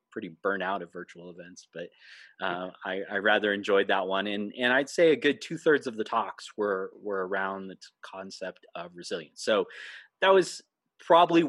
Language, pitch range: English, 95-130 Hz